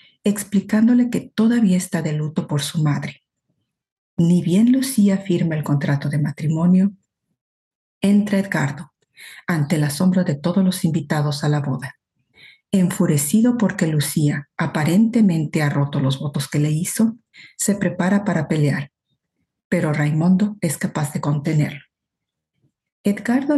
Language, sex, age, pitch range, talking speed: Spanish, female, 50-69, 155-205 Hz, 130 wpm